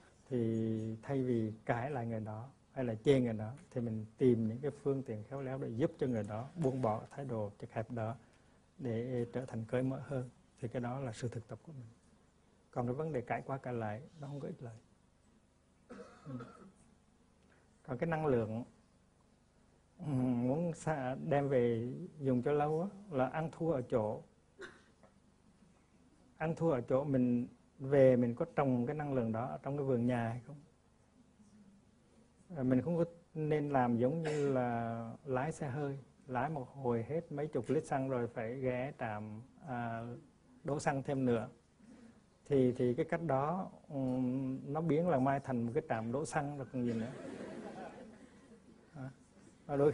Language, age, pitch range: Vietnamese, 60-79, 120-150 Hz